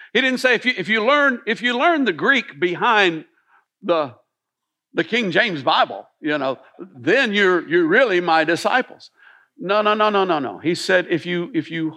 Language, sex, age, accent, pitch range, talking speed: English, male, 60-79, American, 160-255 Hz, 195 wpm